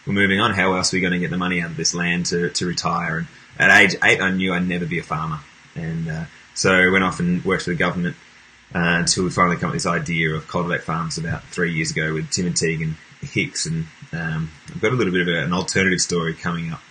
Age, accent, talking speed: 20-39, Australian, 270 wpm